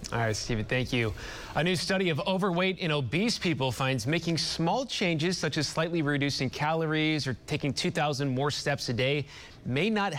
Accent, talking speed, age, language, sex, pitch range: American, 185 wpm, 30-49, English, male, 125-160 Hz